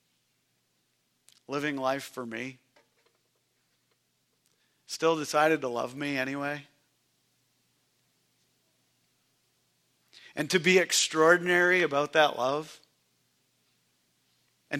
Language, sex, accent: English, male, American